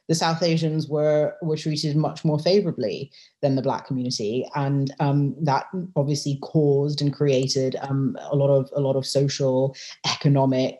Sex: female